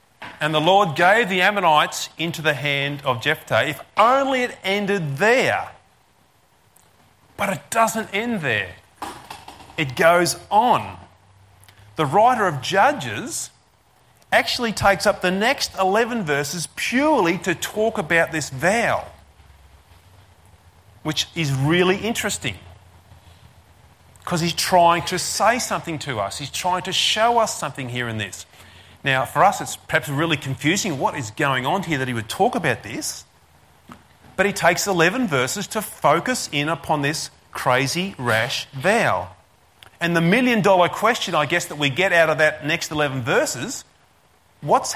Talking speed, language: 145 wpm, English